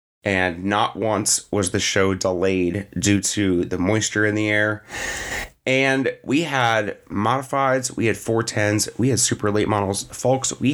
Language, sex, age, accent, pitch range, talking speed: English, male, 30-49, American, 95-120 Hz, 155 wpm